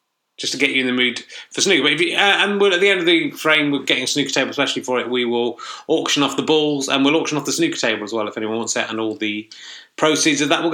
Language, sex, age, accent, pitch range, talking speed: English, male, 30-49, British, 130-165 Hz, 310 wpm